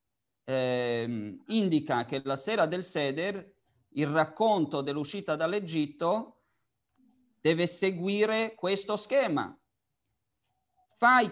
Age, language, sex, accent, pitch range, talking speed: 40-59, Italian, male, native, 145-210 Hz, 85 wpm